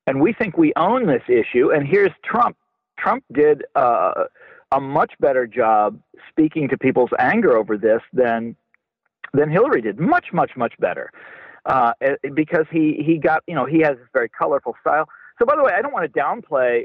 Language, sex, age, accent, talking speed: English, male, 50-69, American, 190 wpm